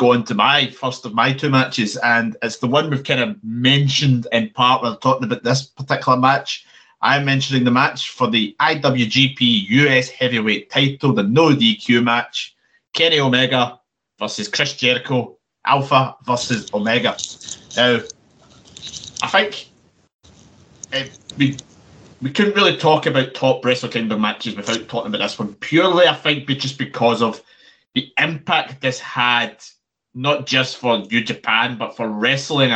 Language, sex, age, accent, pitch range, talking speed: English, male, 30-49, British, 115-135 Hz, 155 wpm